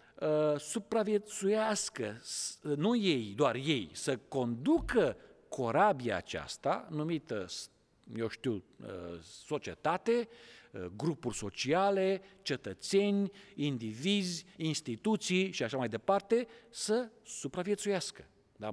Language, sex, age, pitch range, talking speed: Romanian, male, 50-69, 160-235 Hz, 85 wpm